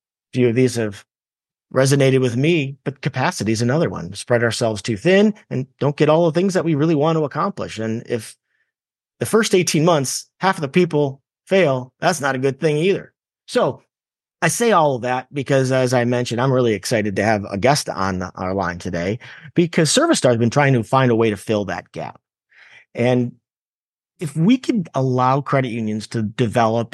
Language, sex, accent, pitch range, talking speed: English, male, American, 120-160 Hz, 200 wpm